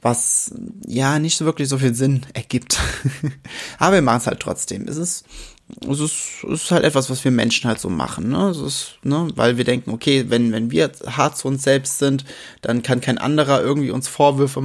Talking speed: 215 wpm